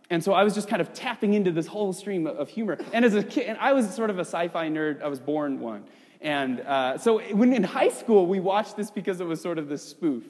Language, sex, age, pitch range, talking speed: English, male, 30-49, 145-220 Hz, 275 wpm